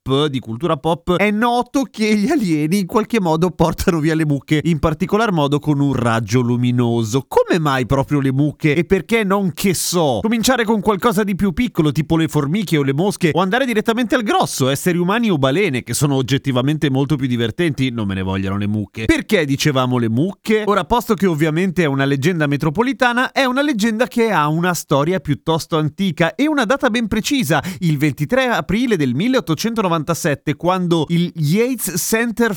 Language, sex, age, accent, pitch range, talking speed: Italian, male, 30-49, native, 140-210 Hz, 185 wpm